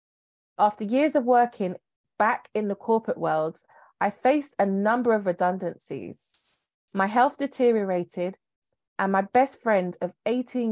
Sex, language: female, English